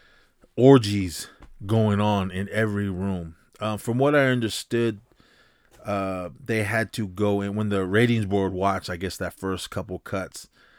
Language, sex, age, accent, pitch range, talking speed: English, male, 30-49, American, 90-110 Hz, 155 wpm